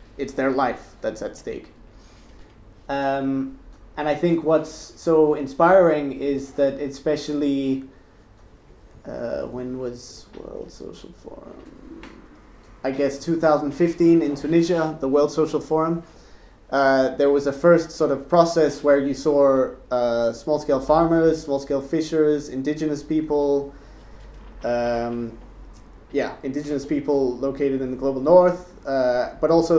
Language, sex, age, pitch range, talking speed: Swedish, male, 20-39, 125-150 Hz, 120 wpm